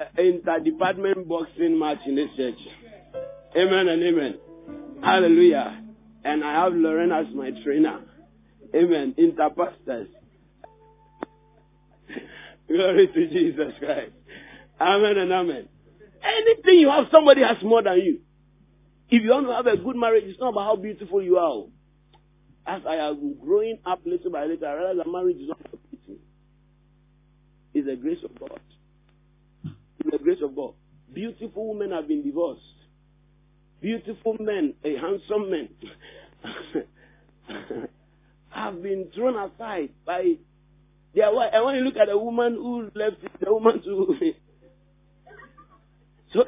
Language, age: English, 50-69